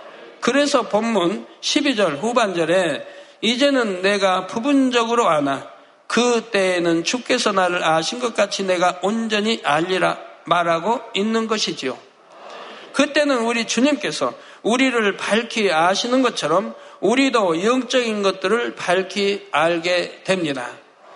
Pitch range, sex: 185-235 Hz, male